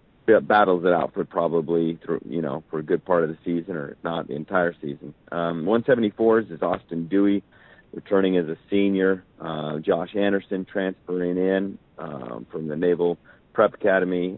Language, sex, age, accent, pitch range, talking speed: English, male, 40-59, American, 80-95 Hz, 160 wpm